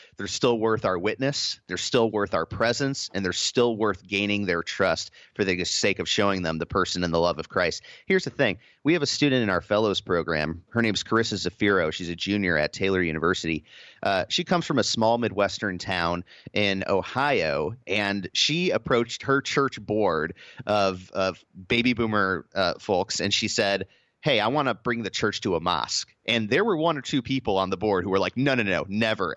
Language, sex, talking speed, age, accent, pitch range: English, male, 210 wpm, 30-49, American, 100-140 Hz